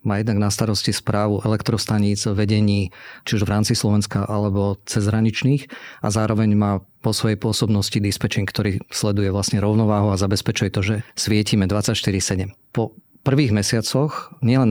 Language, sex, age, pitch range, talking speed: Slovak, male, 40-59, 105-120 Hz, 145 wpm